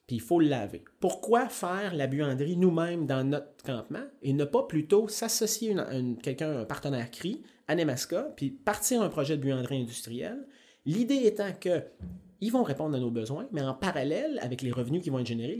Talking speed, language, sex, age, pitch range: 195 wpm, French, male, 30-49, 125-200 Hz